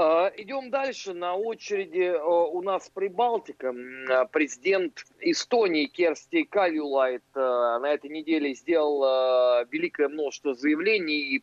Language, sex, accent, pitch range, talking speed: Russian, male, native, 150-235 Hz, 100 wpm